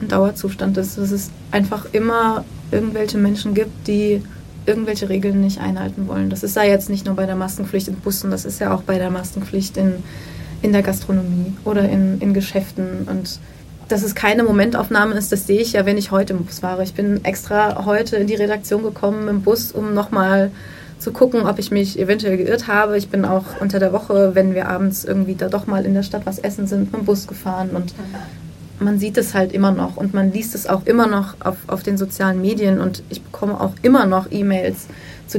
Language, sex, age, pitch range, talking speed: German, female, 30-49, 190-210 Hz, 215 wpm